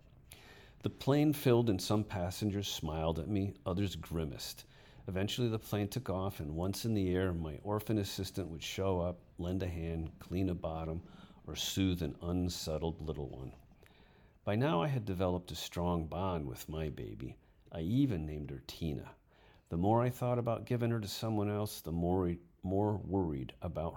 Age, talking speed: 50-69, 175 wpm